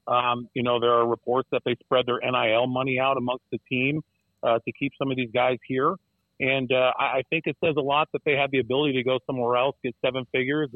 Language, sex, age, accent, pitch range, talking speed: English, male, 40-59, American, 120-140 Hz, 245 wpm